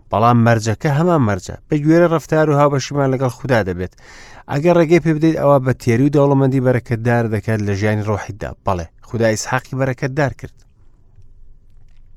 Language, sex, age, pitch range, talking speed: English, male, 30-49, 100-130 Hz, 160 wpm